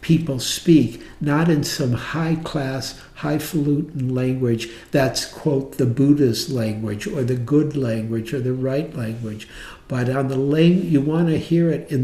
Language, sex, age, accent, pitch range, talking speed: English, male, 60-79, American, 120-140 Hz, 155 wpm